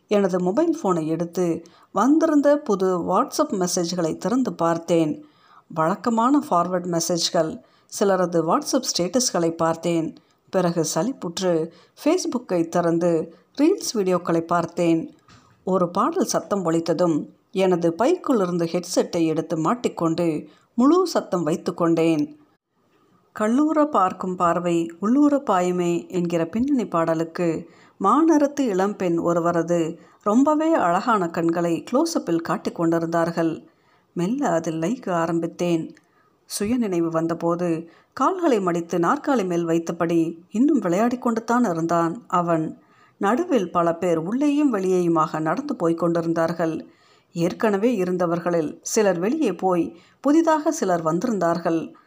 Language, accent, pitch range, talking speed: Tamil, native, 170-240 Hz, 100 wpm